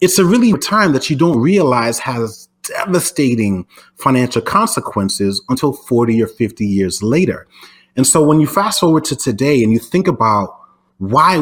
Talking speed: 165 wpm